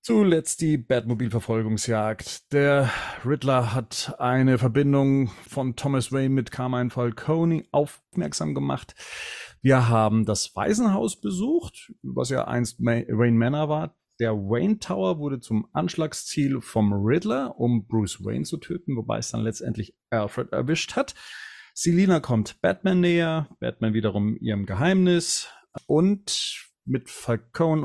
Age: 30-49